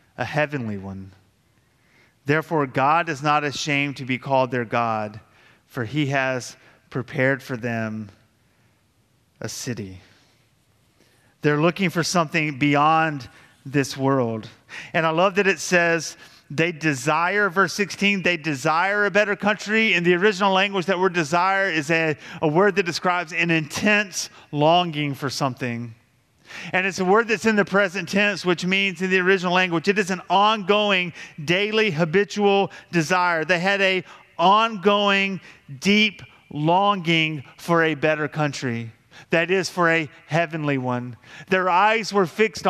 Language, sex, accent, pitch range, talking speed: English, male, American, 135-190 Hz, 145 wpm